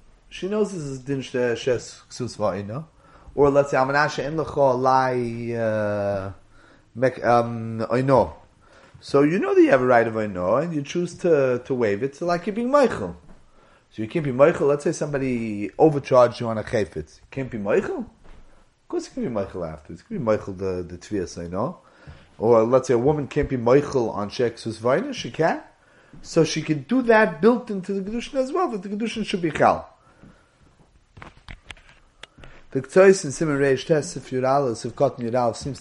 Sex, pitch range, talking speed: male, 120-155 Hz, 155 wpm